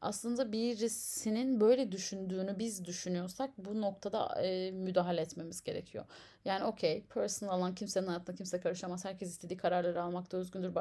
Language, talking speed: Turkish, 140 wpm